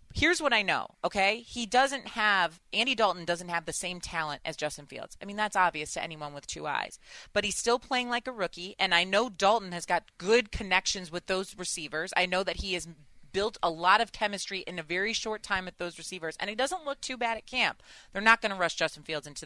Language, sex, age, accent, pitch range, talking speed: English, female, 30-49, American, 175-215 Hz, 245 wpm